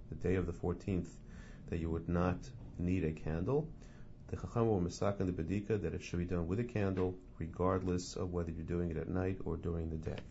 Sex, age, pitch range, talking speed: male, 40-59, 85-100 Hz, 225 wpm